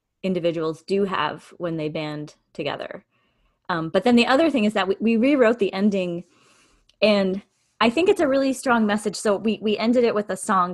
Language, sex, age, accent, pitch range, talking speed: English, female, 20-39, American, 170-220 Hz, 200 wpm